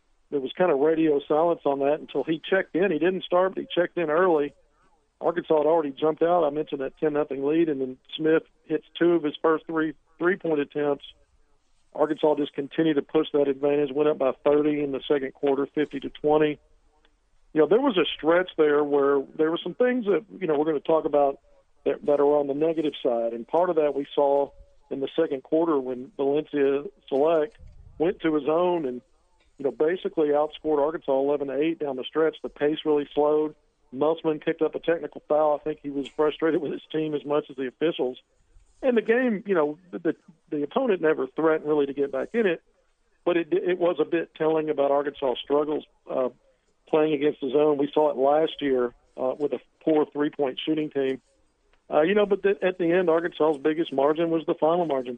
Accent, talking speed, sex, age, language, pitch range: American, 210 wpm, male, 50-69, English, 145-165 Hz